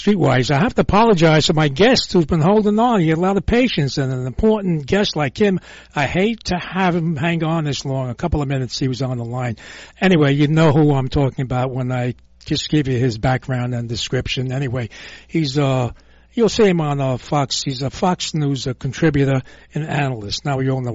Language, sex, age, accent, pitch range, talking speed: English, male, 60-79, American, 125-165 Hz, 225 wpm